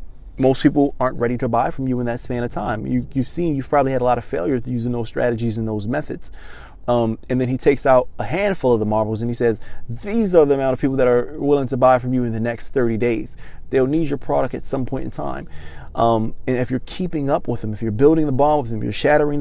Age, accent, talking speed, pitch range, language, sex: 20-39, American, 265 wpm, 115-140 Hz, English, male